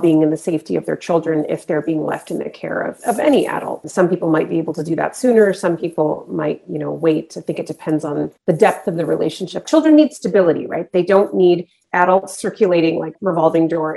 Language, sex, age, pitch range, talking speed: English, female, 30-49, 160-200 Hz, 235 wpm